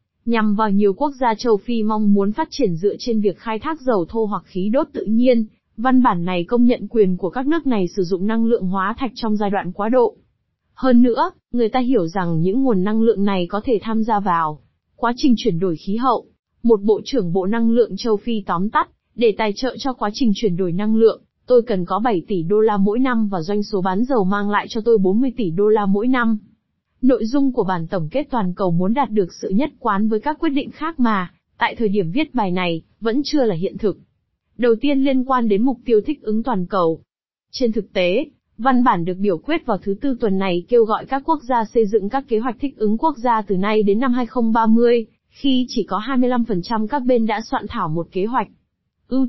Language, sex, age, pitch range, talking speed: Vietnamese, female, 20-39, 200-250 Hz, 240 wpm